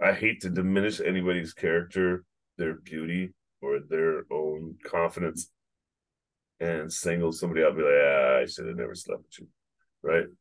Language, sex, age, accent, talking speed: English, male, 30-49, American, 155 wpm